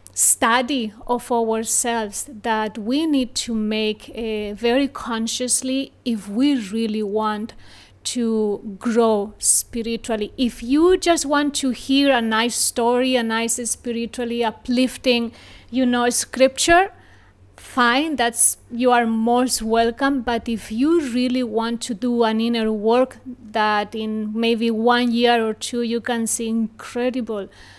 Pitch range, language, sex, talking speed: 220-245 Hz, English, female, 130 wpm